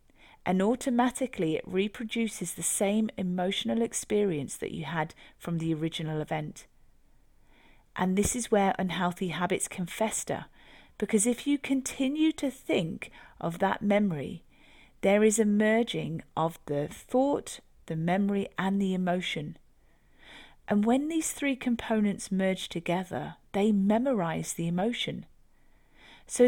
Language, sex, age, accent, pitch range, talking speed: English, female, 40-59, British, 180-230 Hz, 125 wpm